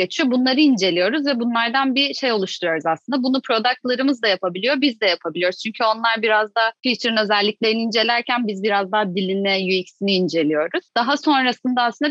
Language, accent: Turkish, native